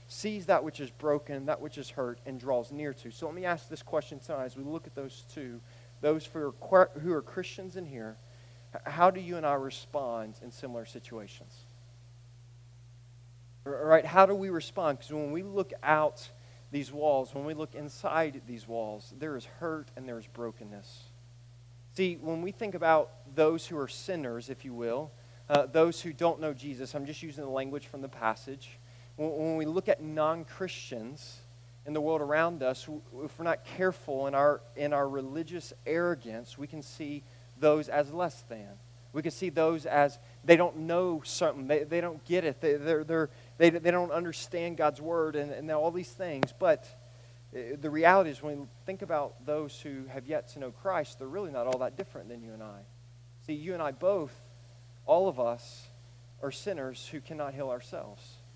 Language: English